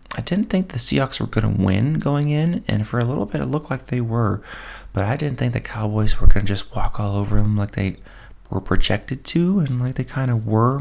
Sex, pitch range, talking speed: male, 100-125 Hz, 255 wpm